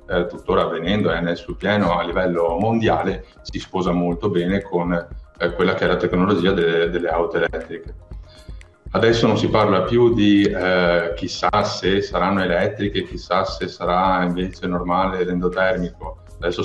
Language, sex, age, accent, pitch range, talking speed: Italian, male, 30-49, native, 85-100 Hz, 150 wpm